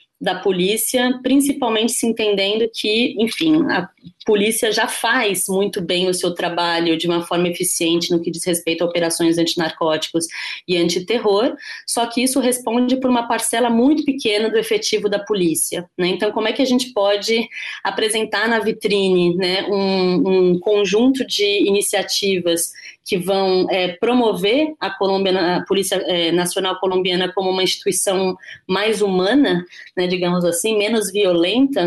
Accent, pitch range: Brazilian, 185-230 Hz